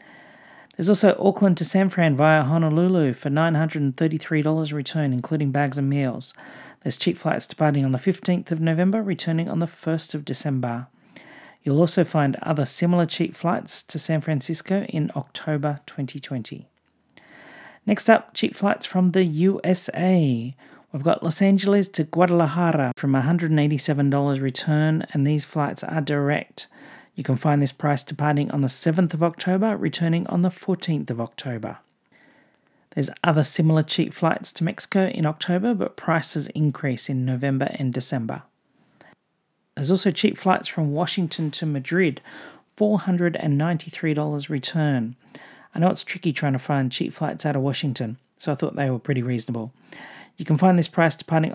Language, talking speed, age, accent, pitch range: English, 155 wpm, 40-59, Australian, 145-180 Hz